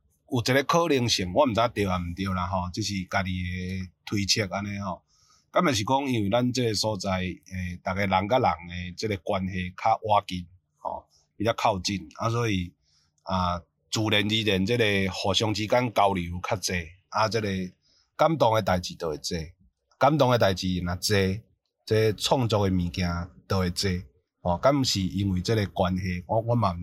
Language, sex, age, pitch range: Chinese, male, 30-49, 90-110 Hz